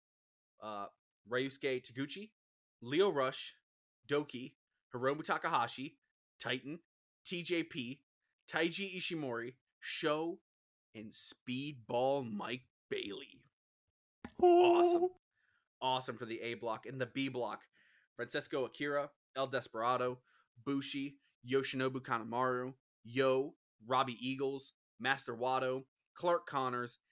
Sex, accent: male, American